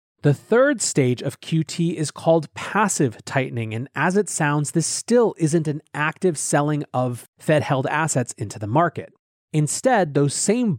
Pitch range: 125-165 Hz